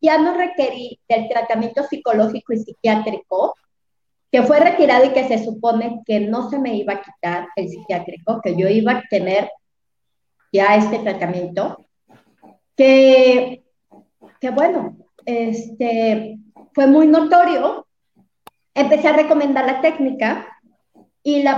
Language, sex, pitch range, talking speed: Spanish, female, 225-305 Hz, 125 wpm